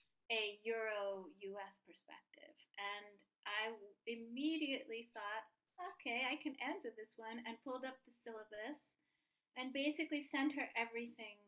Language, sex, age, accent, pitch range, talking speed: English, female, 30-49, American, 210-255 Hz, 120 wpm